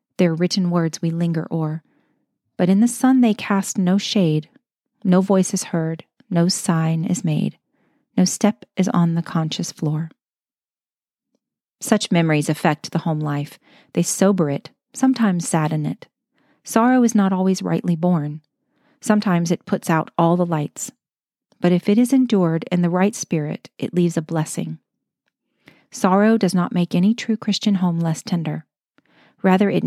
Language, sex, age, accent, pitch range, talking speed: English, female, 40-59, American, 165-205 Hz, 160 wpm